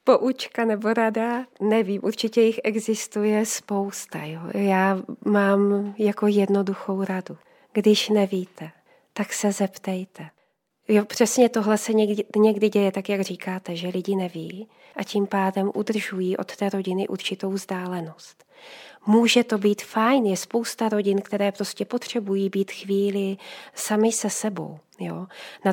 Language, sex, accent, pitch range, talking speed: Czech, female, native, 185-210 Hz, 130 wpm